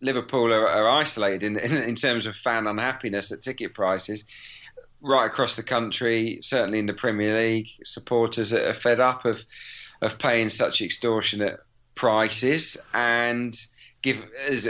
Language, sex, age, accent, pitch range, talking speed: English, male, 40-59, British, 110-130 Hz, 145 wpm